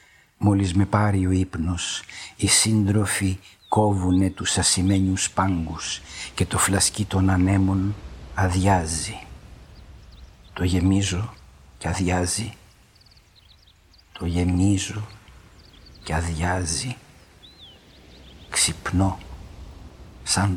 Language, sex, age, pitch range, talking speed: Greek, male, 50-69, 90-100 Hz, 80 wpm